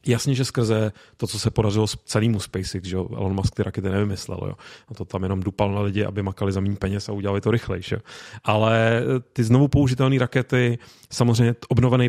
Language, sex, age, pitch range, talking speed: Czech, male, 30-49, 105-120 Hz, 200 wpm